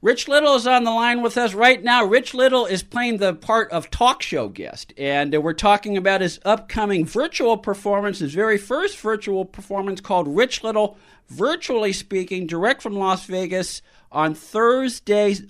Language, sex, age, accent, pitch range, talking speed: English, male, 50-69, American, 170-220 Hz, 170 wpm